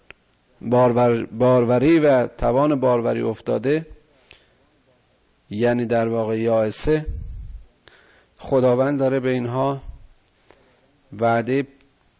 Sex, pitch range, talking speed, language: male, 115-140 Hz, 75 wpm, Persian